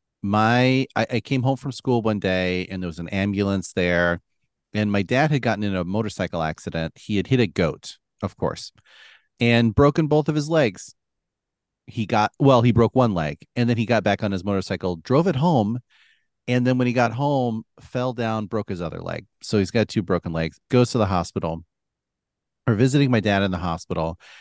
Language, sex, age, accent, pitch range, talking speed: English, male, 40-59, American, 95-120 Hz, 205 wpm